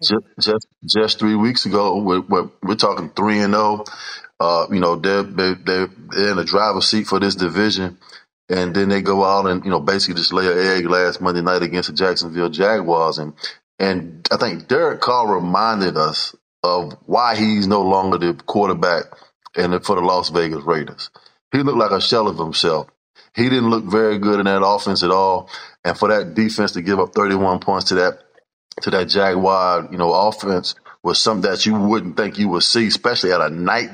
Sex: male